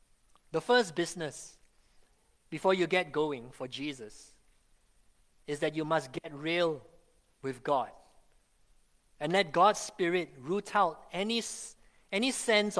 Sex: male